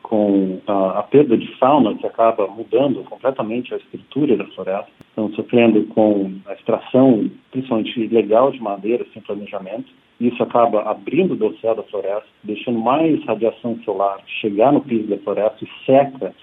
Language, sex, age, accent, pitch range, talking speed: Portuguese, male, 40-59, Brazilian, 105-130 Hz, 155 wpm